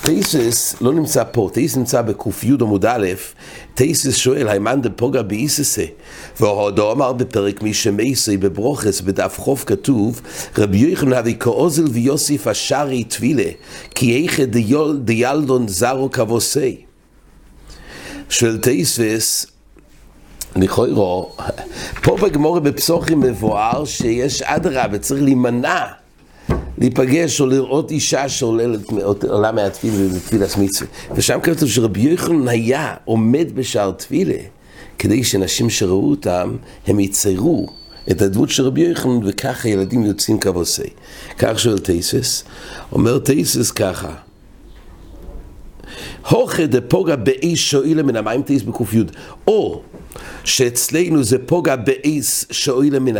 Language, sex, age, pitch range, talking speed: English, male, 60-79, 105-140 Hz, 95 wpm